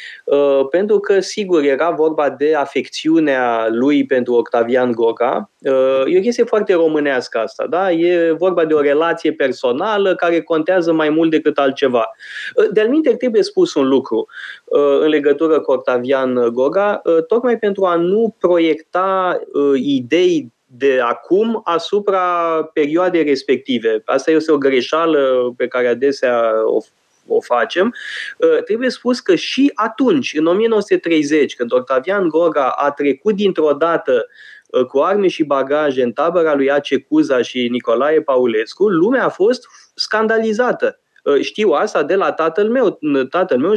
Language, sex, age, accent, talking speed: Romanian, male, 20-39, native, 135 wpm